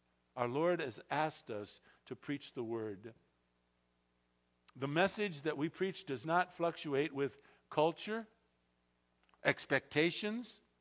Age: 50-69